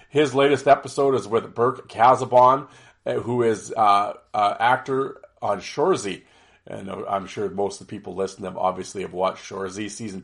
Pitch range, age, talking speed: 105-135 Hz, 40-59, 165 wpm